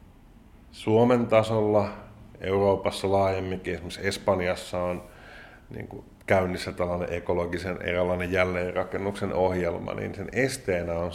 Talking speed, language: 90 wpm, Finnish